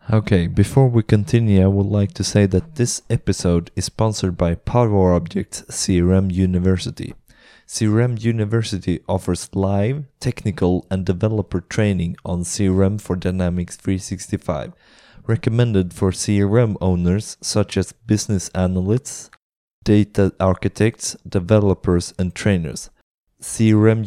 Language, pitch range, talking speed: English, 90-110 Hz, 110 wpm